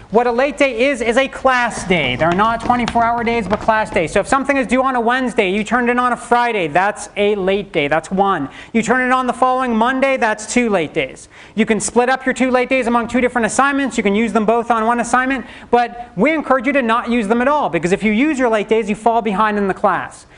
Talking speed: 270 wpm